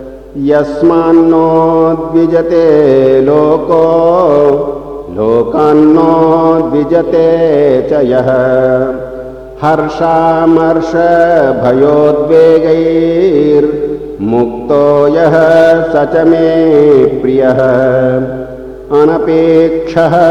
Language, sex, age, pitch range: Hindi, male, 50-69, 130-165 Hz